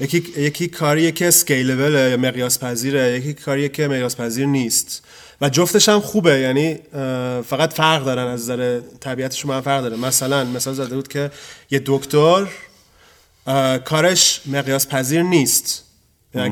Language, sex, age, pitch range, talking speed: Persian, male, 30-49, 135-160 Hz, 140 wpm